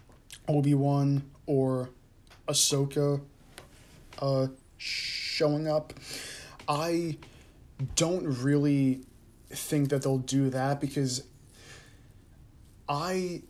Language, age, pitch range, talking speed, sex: English, 20-39, 130-145 Hz, 70 wpm, male